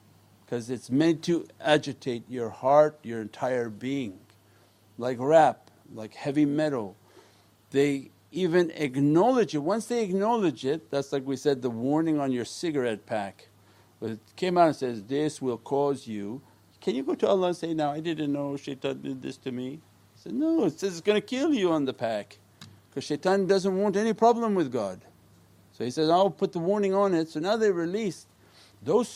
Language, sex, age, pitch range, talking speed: English, male, 50-69, 115-170 Hz, 190 wpm